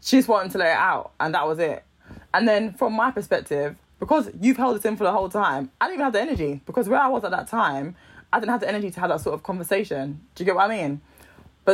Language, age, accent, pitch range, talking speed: English, 20-39, British, 145-200 Hz, 285 wpm